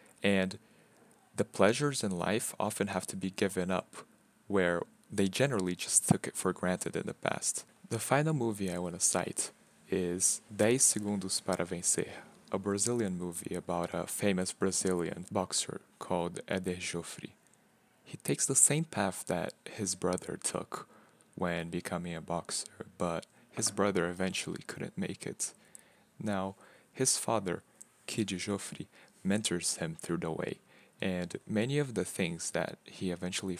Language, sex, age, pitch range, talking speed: English, male, 20-39, 90-110 Hz, 150 wpm